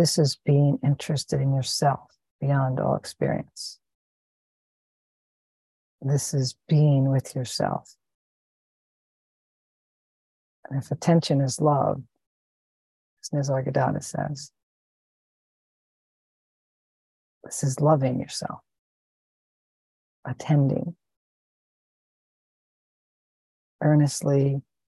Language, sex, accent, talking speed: English, female, American, 70 wpm